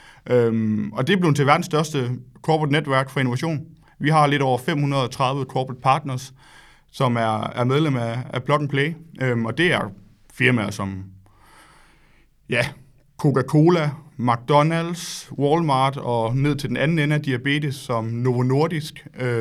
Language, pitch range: Danish, 125-155 Hz